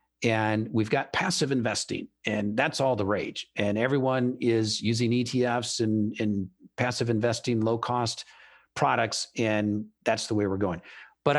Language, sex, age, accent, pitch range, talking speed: English, male, 50-69, American, 115-165 Hz, 155 wpm